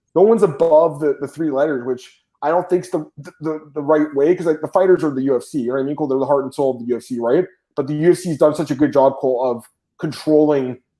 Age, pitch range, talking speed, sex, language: 20-39, 130-175 Hz, 250 wpm, male, English